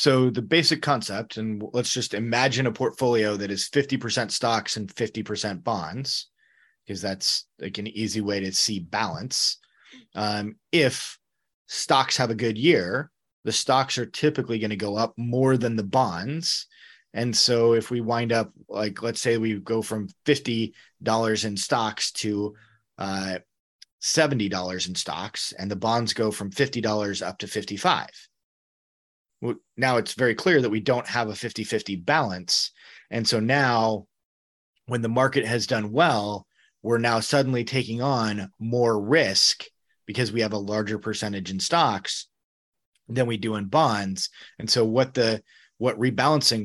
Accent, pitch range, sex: American, 105-125 Hz, male